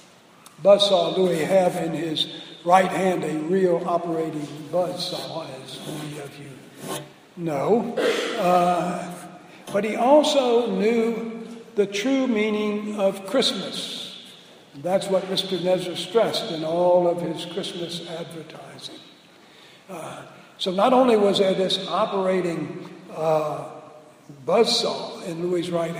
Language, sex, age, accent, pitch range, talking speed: English, male, 60-79, American, 170-230 Hz, 115 wpm